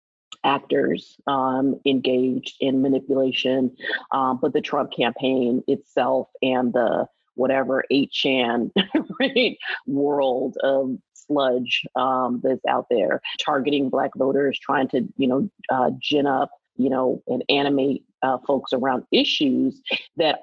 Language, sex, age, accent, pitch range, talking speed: English, female, 30-49, American, 135-165 Hz, 125 wpm